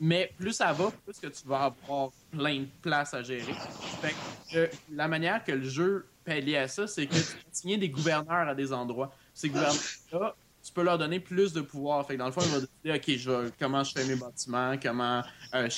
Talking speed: 230 wpm